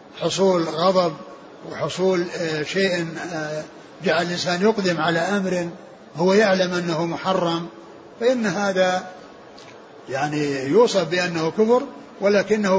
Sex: male